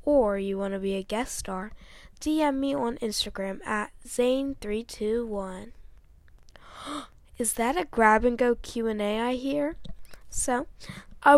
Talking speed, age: 120 wpm, 10-29